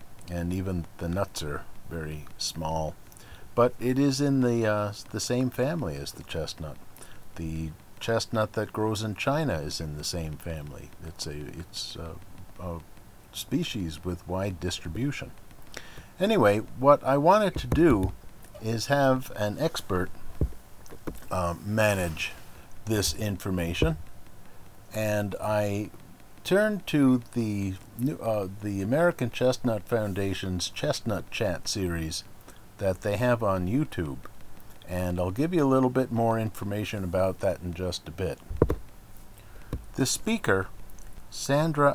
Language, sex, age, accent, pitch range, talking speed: English, male, 50-69, American, 90-115 Hz, 130 wpm